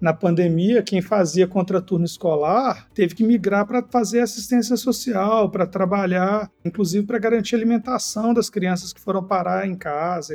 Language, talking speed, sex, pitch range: Portuguese, 155 wpm, male, 190-235 Hz